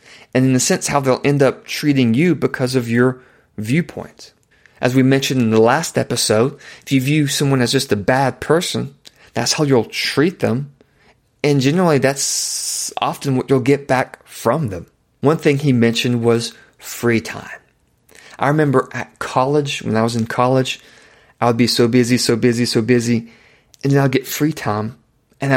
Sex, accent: male, American